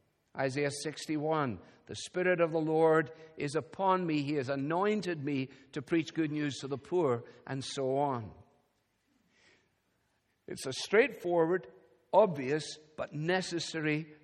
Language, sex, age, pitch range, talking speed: English, male, 60-79, 130-165 Hz, 125 wpm